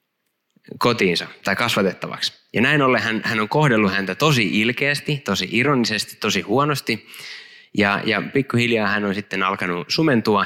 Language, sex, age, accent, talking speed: Finnish, male, 20-39, native, 145 wpm